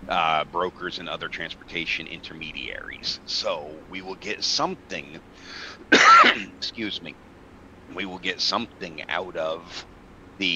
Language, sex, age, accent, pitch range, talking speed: English, male, 40-59, American, 90-110 Hz, 115 wpm